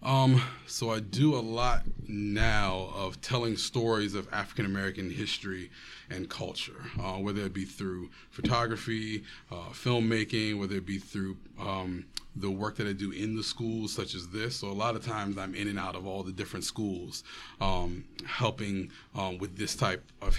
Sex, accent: male, American